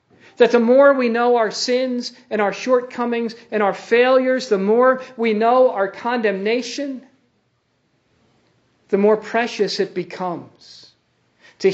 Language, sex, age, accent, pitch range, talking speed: English, male, 50-69, American, 165-240 Hz, 130 wpm